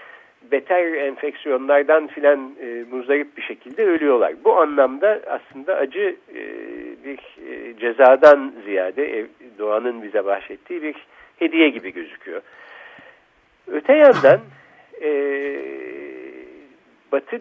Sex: male